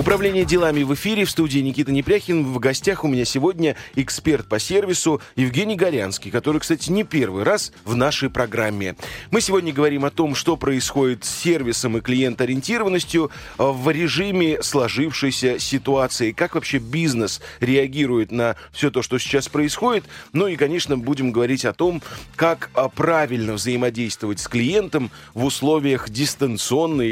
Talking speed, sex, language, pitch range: 145 wpm, male, Russian, 120-155 Hz